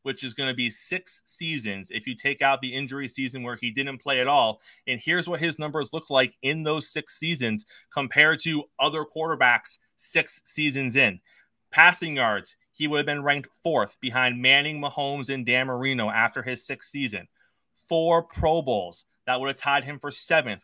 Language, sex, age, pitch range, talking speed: English, male, 30-49, 125-150 Hz, 190 wpm